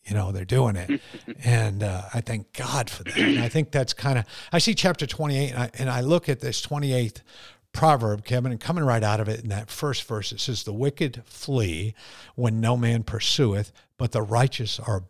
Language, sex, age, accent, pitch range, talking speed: English, male, 50-69, American, 110-135 Hz, 220 wpm